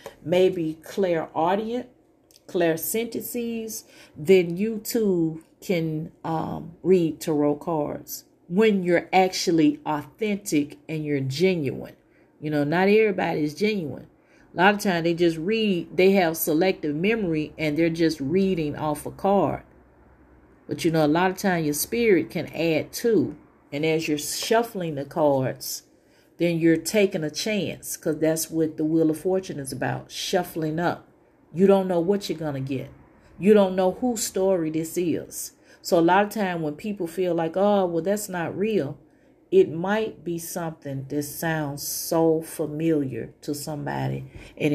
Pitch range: 155-195 Hz